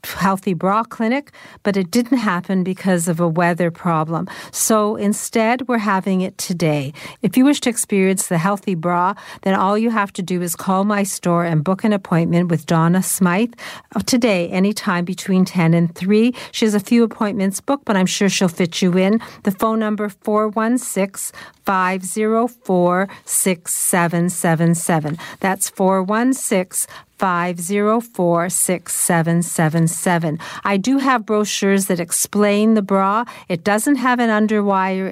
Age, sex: 50-69, female